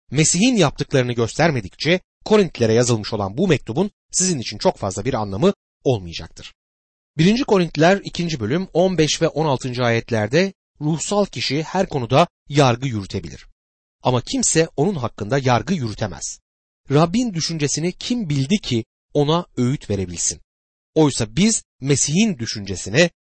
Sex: male